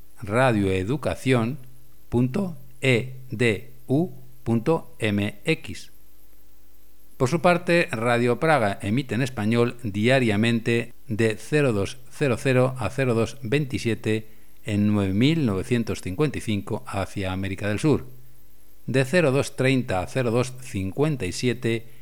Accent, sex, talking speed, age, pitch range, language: Spanish, male, 65 wpm, 60-79, 105-130 Hz, Spanish